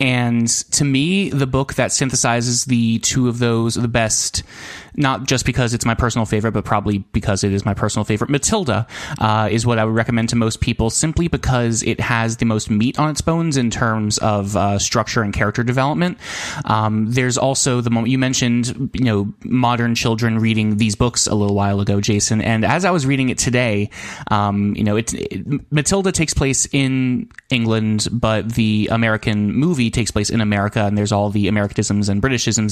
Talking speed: 195 wpm